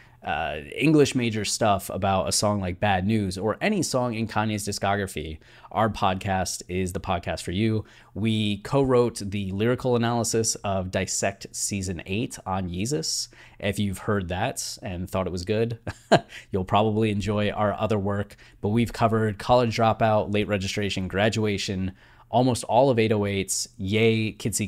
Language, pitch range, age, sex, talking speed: English, 95-110 Hz, 20-39, male, 155 wpm